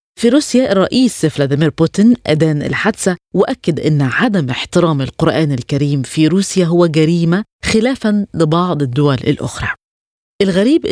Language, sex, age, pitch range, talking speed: Arabic, female, 20-39, 145-200 Hz, 120 wpm